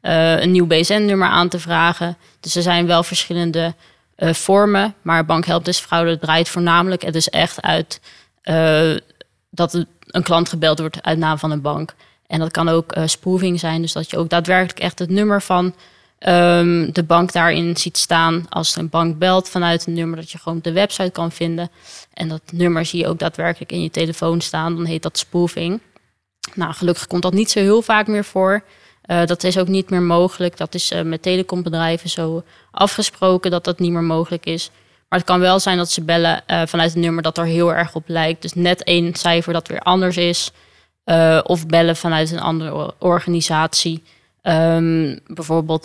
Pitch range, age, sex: 165-180 Hz, 20-39, female